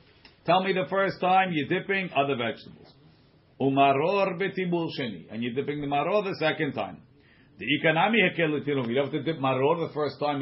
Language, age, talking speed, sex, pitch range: English, 50-69, 160 wpm, male, 135-165 Hz